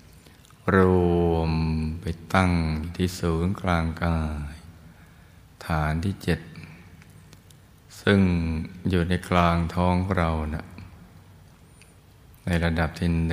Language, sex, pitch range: Thai, male, 80-90 Hz